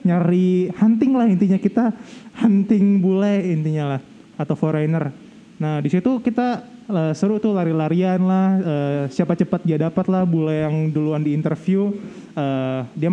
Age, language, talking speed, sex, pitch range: 20-39, Indonesian, 145 wpm, male, 155-200 Hz